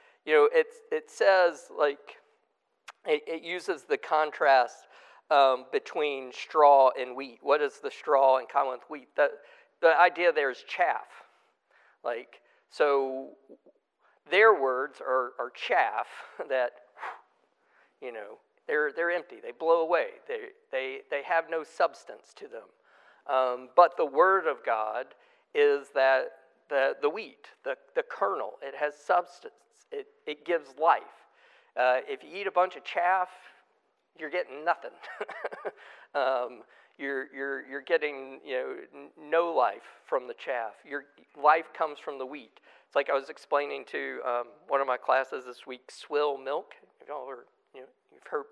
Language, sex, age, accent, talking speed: English, male, 50-69, American, 155 wpm